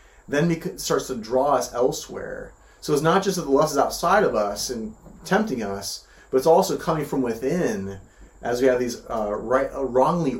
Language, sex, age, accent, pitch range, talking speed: English, male, 30-49, American, 100-145 Hz, 190 wpm